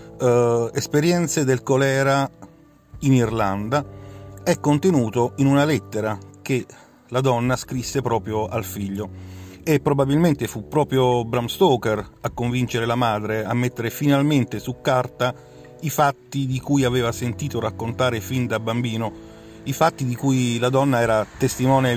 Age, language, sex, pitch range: 40-59, Italian, male, 105-135 Hz